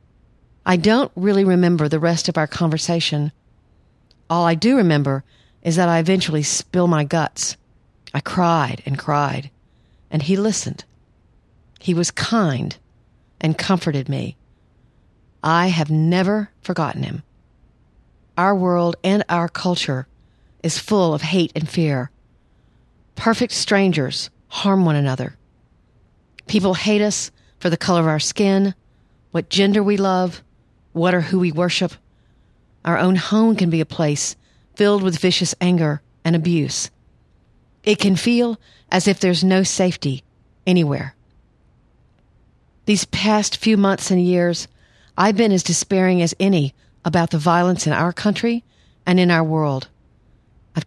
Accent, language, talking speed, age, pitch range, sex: American, English, 140 wpm, 50-69, 145-185 Hz, female